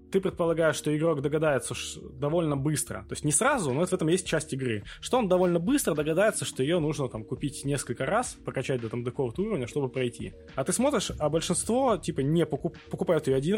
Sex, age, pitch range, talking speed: male, 20-39, 125-180 Hz, 210 wpm